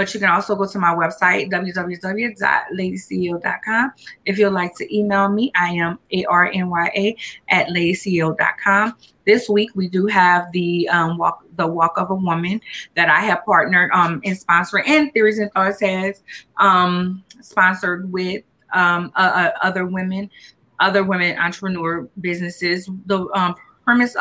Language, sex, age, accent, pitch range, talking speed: English, female, 30-49, American, 175-205 Hz, 150 wpm